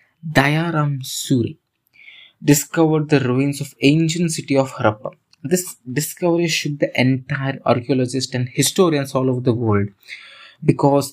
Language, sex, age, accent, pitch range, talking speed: Hindi, male, 20-39, native, 125-155 Hz, 130 wpm